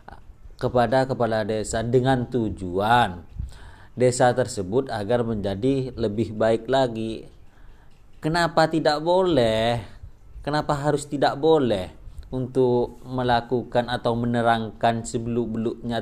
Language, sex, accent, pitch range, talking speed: Indonesian, male, native, 105-130 Hz, 90 wpm